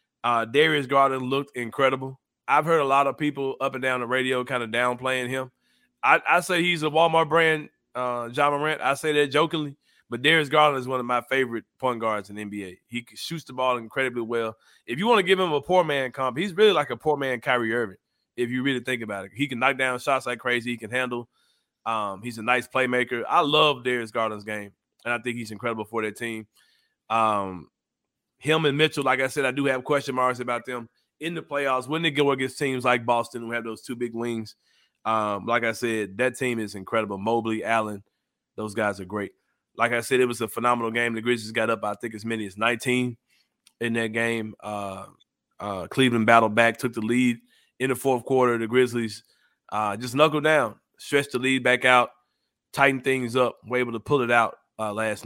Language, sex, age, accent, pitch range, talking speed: English, male, 30-49, American, 115-135 Hz, 220 wpm